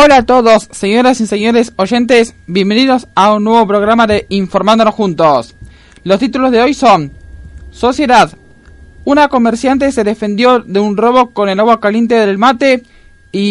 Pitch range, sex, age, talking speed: 190-250 Hz, male, 20-39, 155 wpm